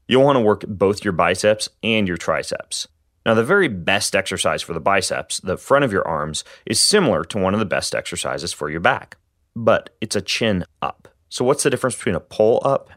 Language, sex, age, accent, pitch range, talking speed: English, male, 30-49, American, 85-110 Hz, 210 wpm